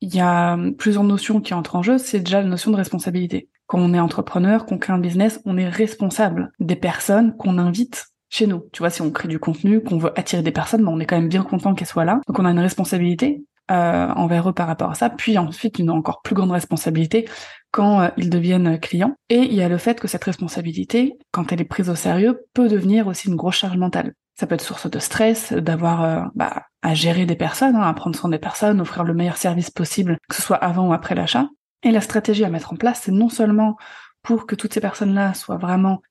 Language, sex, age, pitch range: French, female, 20-39, 175-215 Hz